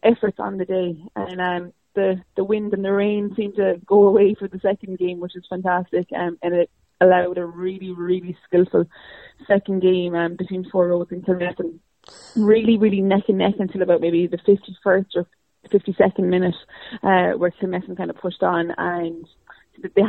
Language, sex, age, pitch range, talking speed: English, female, 20-39, 180-205 Hz, 180 wpm